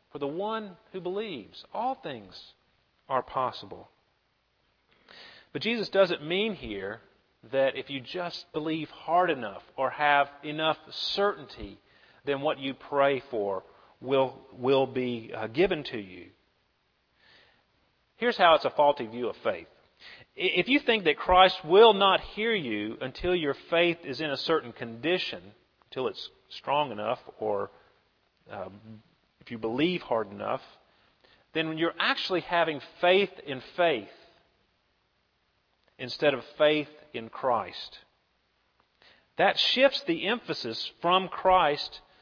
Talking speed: 130 wpm